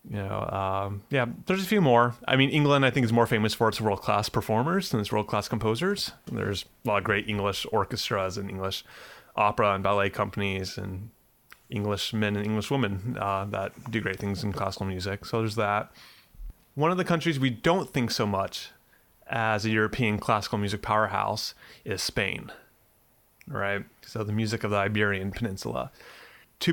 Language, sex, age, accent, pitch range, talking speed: English, male, 30-49, American, 100-125 Hz, 180 wpm